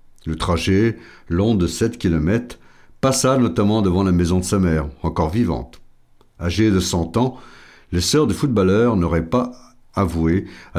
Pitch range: 80-105 Hz